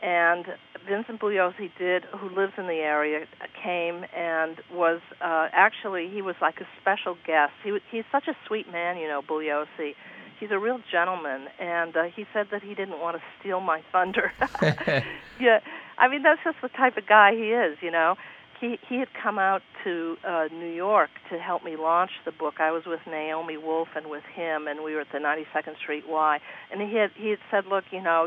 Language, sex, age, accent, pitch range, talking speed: English, female, 50-69, American, 155-200 Hz, 210 wpm